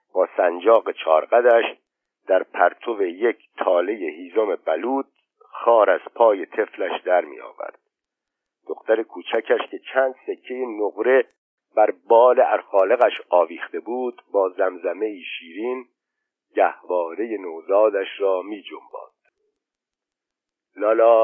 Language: Persian